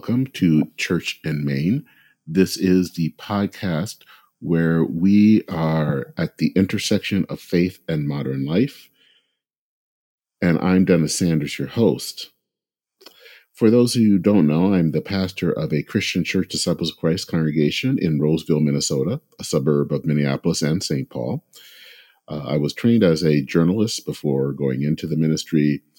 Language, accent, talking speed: English, American, 150 wpm